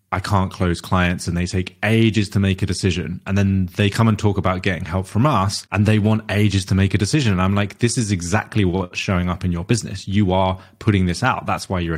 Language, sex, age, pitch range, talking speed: English, male, 20-39, 90-110 Hz, 255 wpm